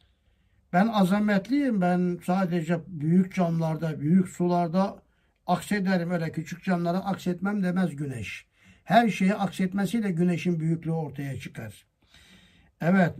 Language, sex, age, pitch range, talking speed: Turkish, male, 60-79, 165-220 Hz, 105 wpm